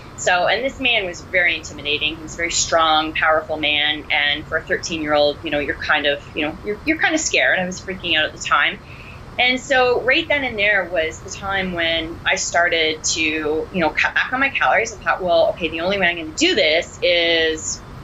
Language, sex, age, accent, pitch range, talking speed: English, female, 30-49, American, 150-180 Hz, 235 wpm